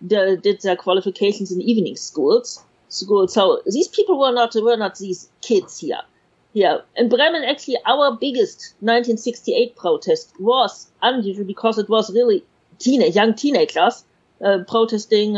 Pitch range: 200-255 Hz